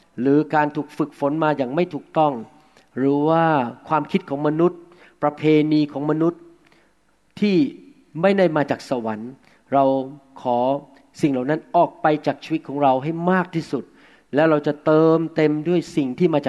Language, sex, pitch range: Thai, male, 135-160 Hz